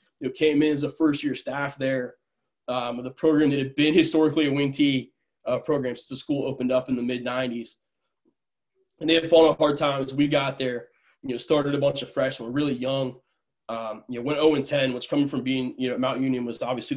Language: English